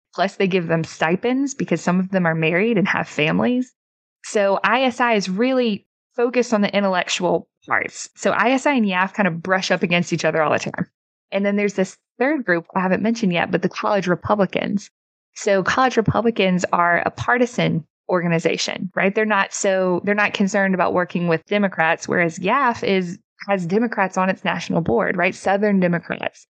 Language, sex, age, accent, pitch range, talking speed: English, female, 20-39, American, 180-215 Hz, 185 wpm